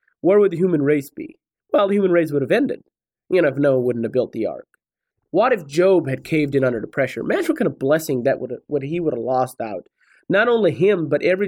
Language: English